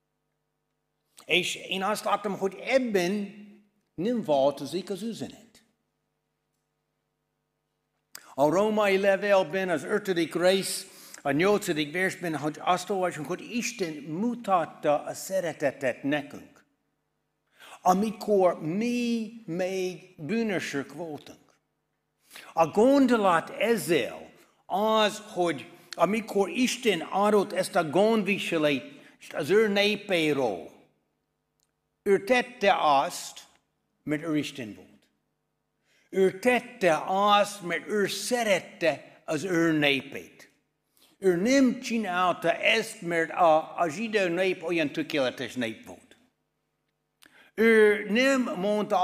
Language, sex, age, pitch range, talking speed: Hungarian, male, 60-79, 165-215 Hz, 95 wpm